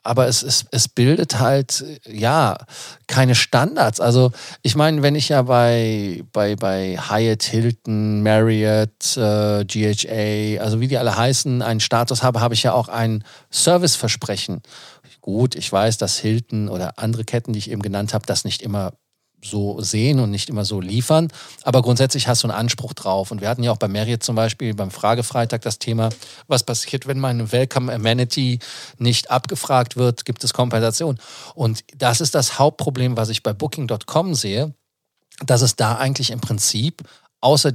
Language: German